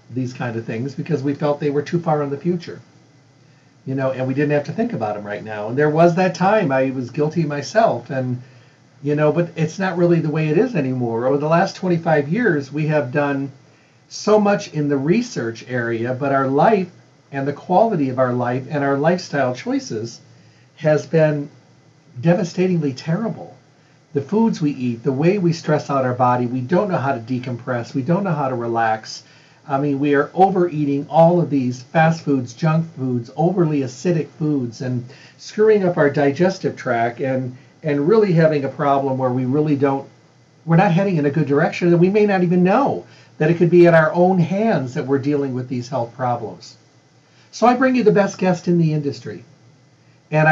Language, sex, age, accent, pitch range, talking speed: English, male, 50-69, American, 135-175 Hz, 205 wpm